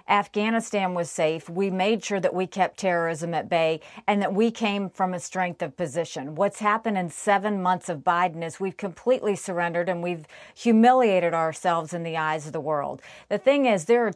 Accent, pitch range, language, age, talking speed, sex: American, 175-205 Hz, English, 40-59, 200 wpm, female